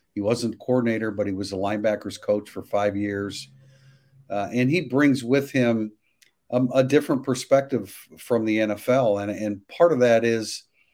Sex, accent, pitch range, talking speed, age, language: male, American, 100-125 Hz, 170 wpm, 50-69, English